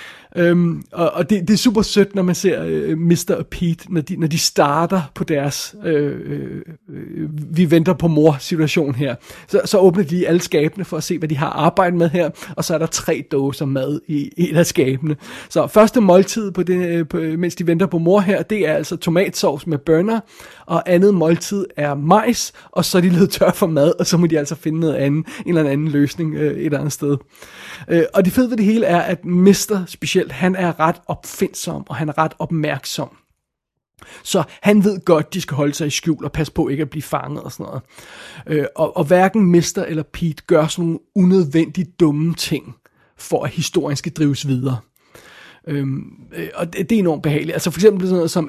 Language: Danish